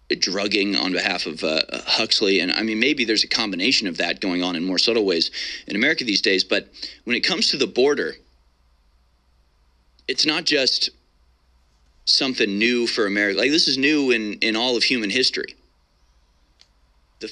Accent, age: American, 30-49